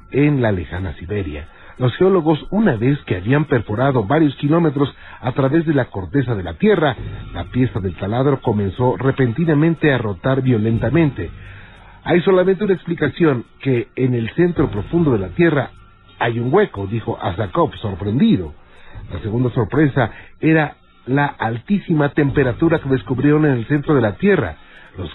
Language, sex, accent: Spanish, male, Mexican